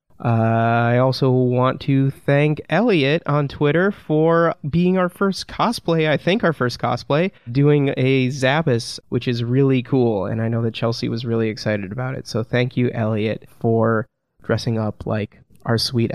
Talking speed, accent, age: 170 wpm, American, 20-39